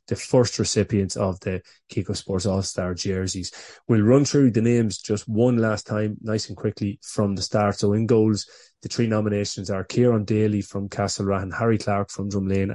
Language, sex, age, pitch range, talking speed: English, male, 20-39, 95-110 Hz, 195 wpm